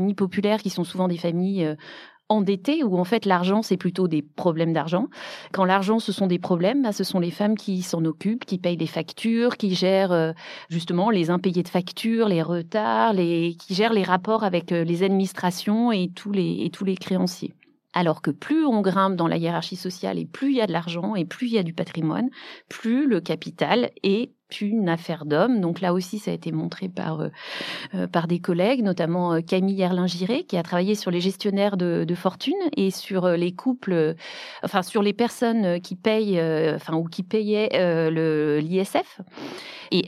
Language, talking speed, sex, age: French, 195 wpm, female, 40-59